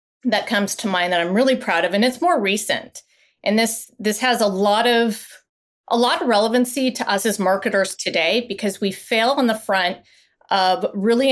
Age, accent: 30-49, American